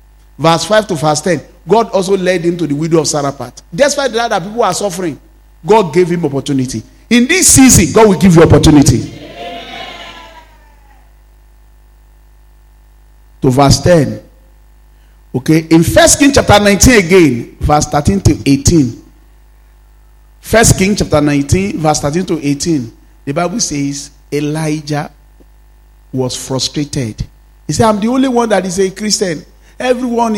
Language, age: English, 40-59